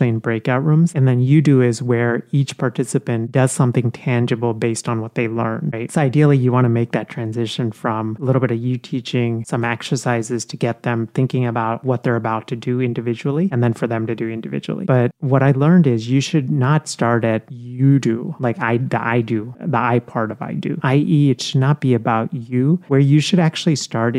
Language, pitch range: English, 120-140 Hz